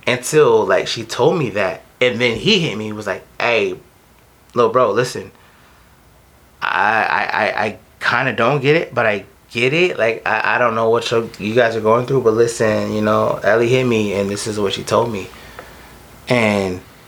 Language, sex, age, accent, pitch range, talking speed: English, male, 20-39, American, 110-130 Hz, 195 wpm